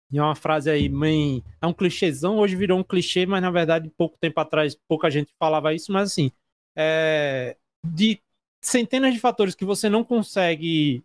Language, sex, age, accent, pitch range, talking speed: Portuguese, male, 20-39, Brazilian, 160-205 Hz, 180 wpm